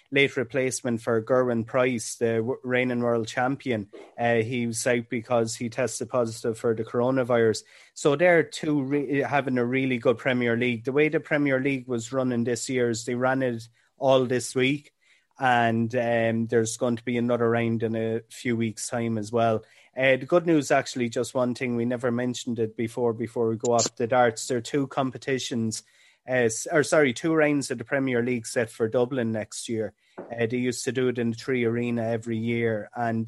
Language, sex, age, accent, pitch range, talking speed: English, male, 30-49, Irish, 115-130 Hz, 195 wpm